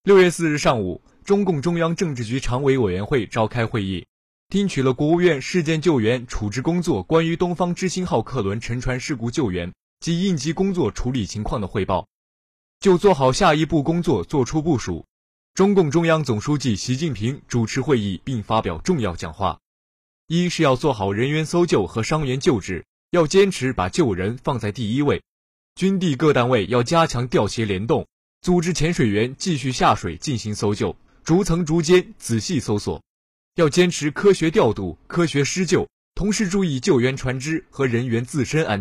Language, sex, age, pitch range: Chinese, male, 20-39, 115-170 Hz